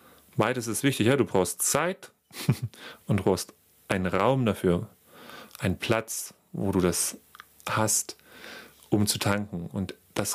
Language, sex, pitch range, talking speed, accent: German, male, 105-130 Hz, 135 wpm, German